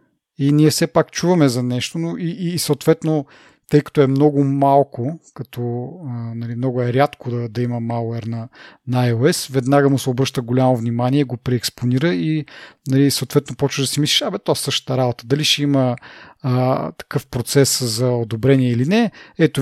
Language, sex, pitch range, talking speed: Bulgarian, male, 125-145 Hz, 190 wpm